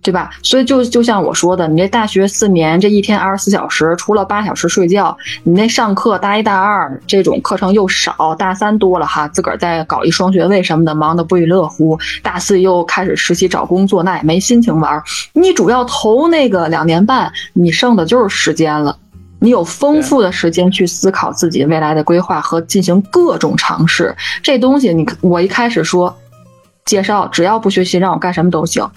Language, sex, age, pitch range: Chinese, female, 20-39, 175-230 Hz